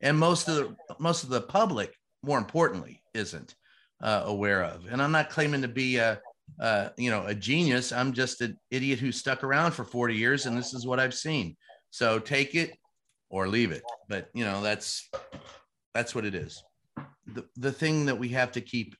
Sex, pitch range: male, 105-125 Hz